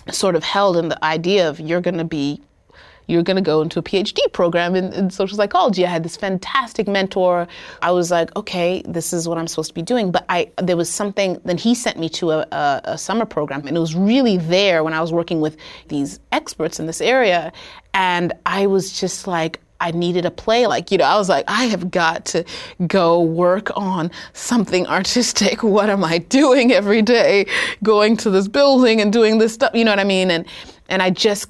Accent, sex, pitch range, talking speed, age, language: American, female, 160-200 Hz, 225 wpm, 30-49, English